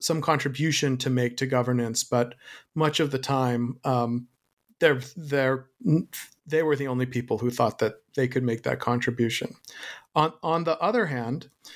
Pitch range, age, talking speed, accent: 120-140 Hz, 40-59, 165 wpm, American